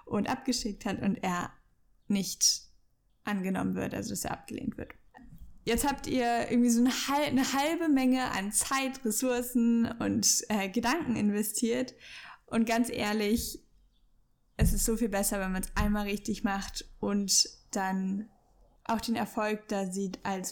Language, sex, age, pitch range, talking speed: German, female, 10-29, 205-250 Hz, 145 wpm